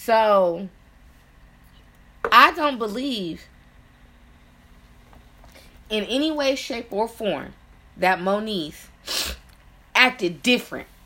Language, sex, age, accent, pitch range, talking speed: English, female, 20-39, American, 155-225 Hz, 75 wpm